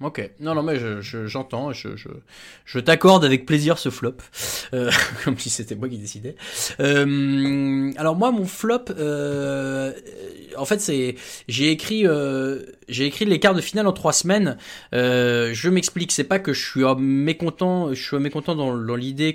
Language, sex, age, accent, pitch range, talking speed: French, male, 20-39, French, 130-180 Hz, 180 wpm